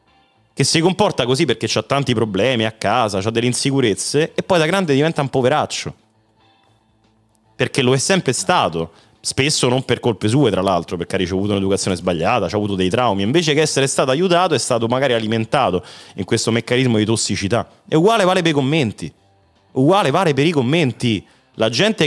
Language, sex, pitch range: Italian, male, 100-145 Hz